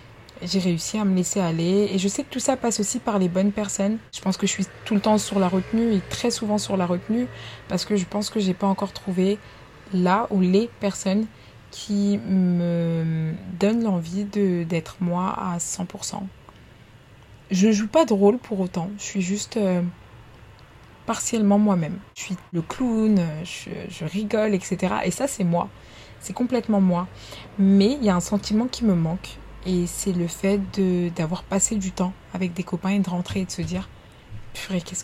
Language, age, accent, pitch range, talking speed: French, 20-39, French, 175-200 Hz, 200 wpm